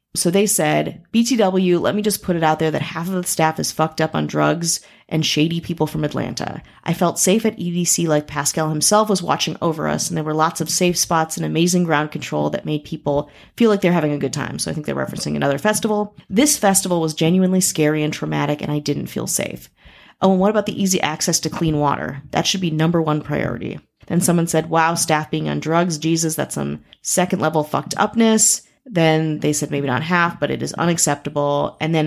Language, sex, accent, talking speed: English, female, American, 225 wpm